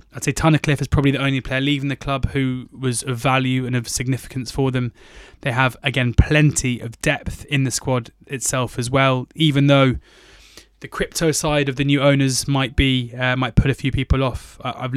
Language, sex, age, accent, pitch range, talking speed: English, male, 20-39, British, 120-135 Hz, 205 wpm